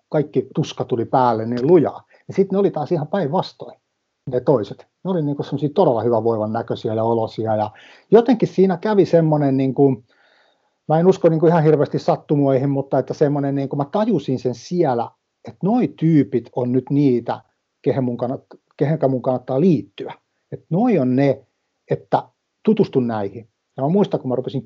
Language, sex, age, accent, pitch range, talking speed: Finnish, male, 60-79, native, 120-155 Hz, 165 wpm